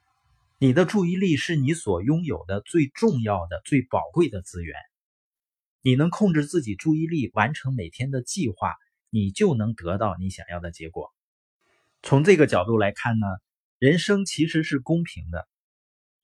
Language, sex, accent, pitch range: Chinese, male, native, 100-160 Hz